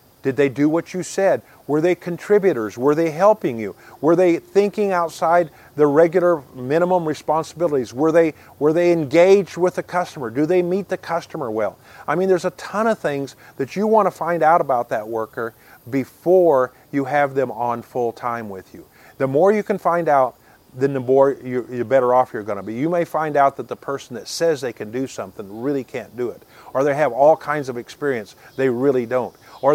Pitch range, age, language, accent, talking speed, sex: 125-165 Hz, 40-59, English, American, 210 wpm, male